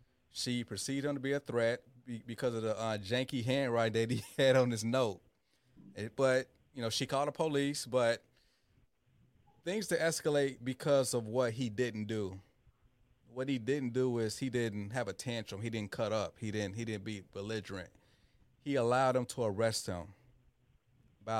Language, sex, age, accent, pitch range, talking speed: English, male, 30-49, American, 110-130 Hz, 180 wpm